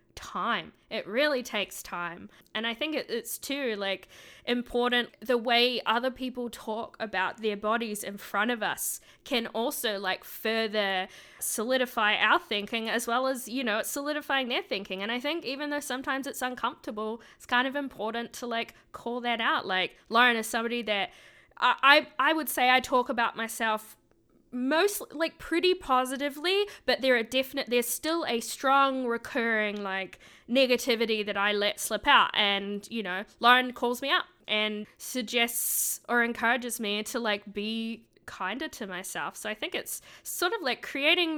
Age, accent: 10-29, Australian